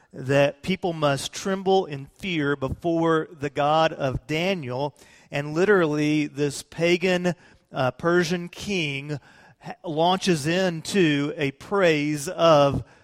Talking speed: 110 wpm